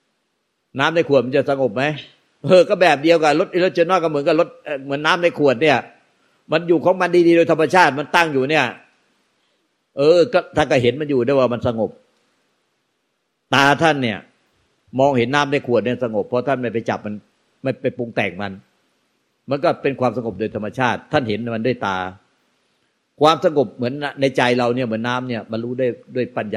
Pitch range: 115-145 Hz